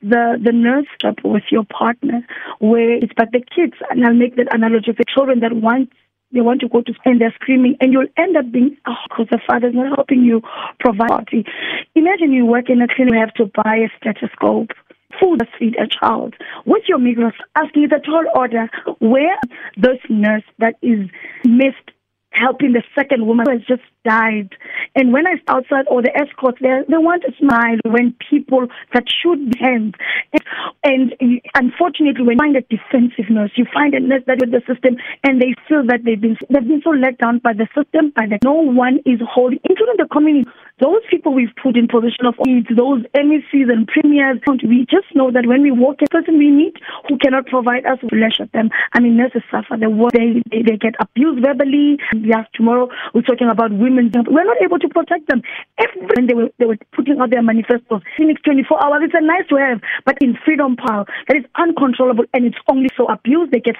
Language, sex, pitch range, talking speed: English, female, 235-285 Hz, 205 wpm